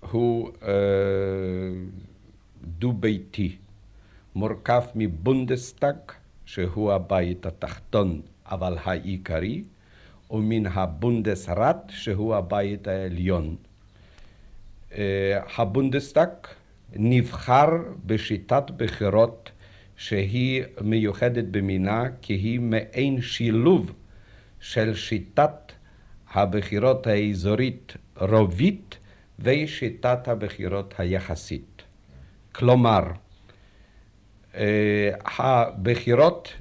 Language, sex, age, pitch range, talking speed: Hebrew, male, 60-79, 95-115 Hz, 55 wpm